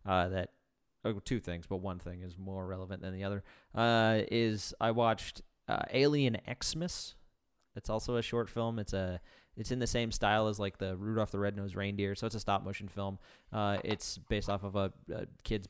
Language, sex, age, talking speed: English, male, 30-49, 210 wpm